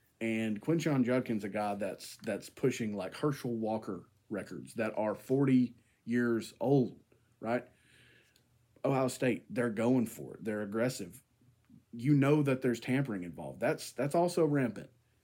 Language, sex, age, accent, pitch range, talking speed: English, male, 30-49, American, 115-150 Hz, 140 wpm